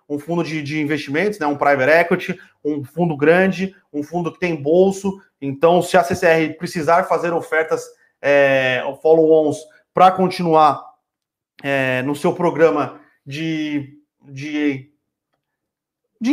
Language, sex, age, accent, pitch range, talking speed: Portuguese, male, 30-49, Brazilian, 150-180 Hz, 130 wpm